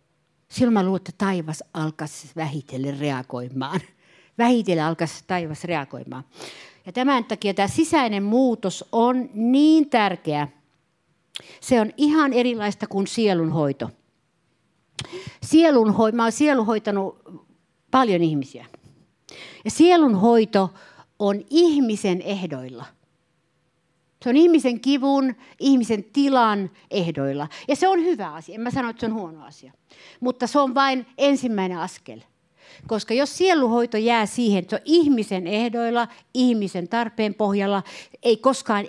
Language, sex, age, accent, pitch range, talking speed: Finnish, female, 60-79, native, 170-245 Hz, 115 wpm